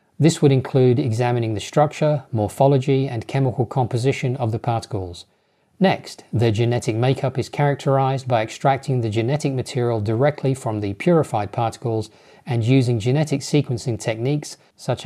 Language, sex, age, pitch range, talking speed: English, male, 40-59, 110-135 Hz, 140 wpm